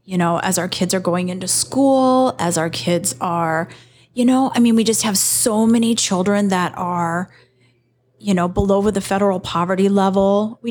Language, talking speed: English, 185 wpm